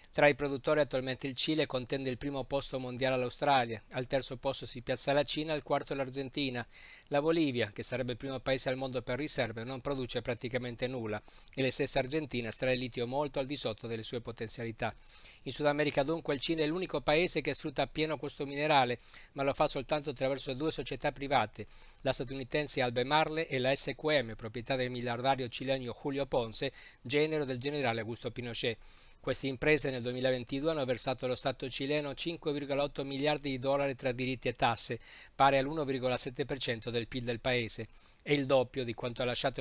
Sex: male